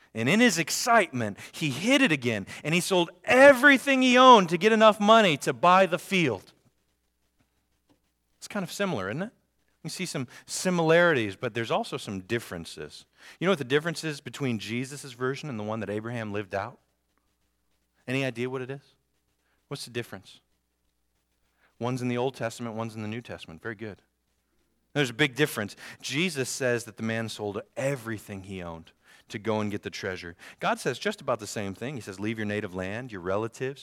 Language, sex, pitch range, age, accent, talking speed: English, male, 110-185 Hz, 40-59, American, 190 wpm